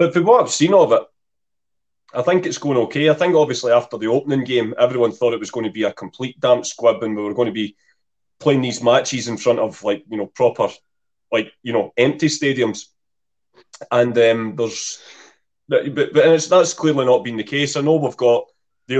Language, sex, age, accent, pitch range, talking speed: English, male, 30-49, British, 115-140 Hz, 215 wpm